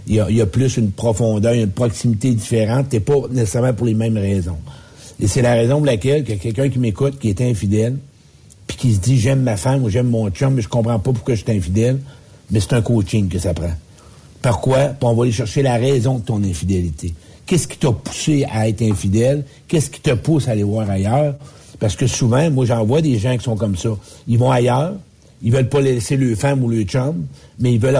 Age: 60-79